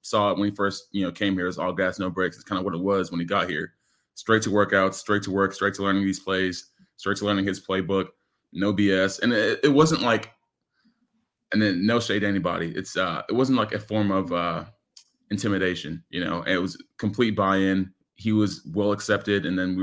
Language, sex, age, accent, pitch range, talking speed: English, male, 20-39, American, 95-105 Hz, 235 wpm